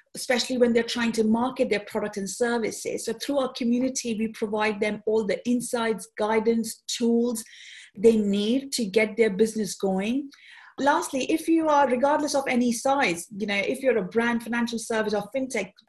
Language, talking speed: English, 180 wpm